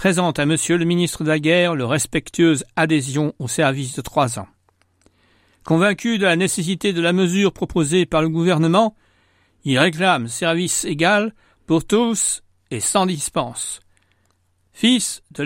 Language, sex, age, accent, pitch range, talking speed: French, male, 60-79, French, 110-180 Hz, 150 wpm